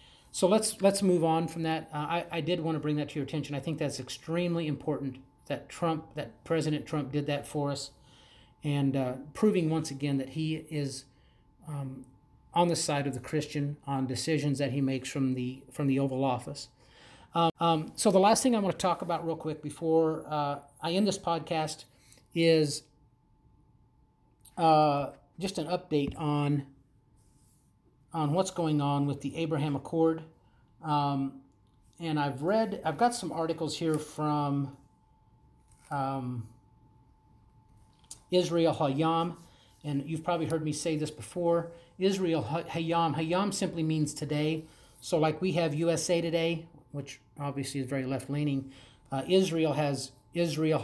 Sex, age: male, 40-59